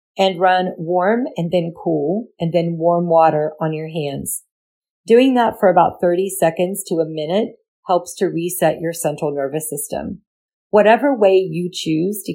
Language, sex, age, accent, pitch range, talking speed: English, female, 40-59, American, 160-210 Hz, 165 wpm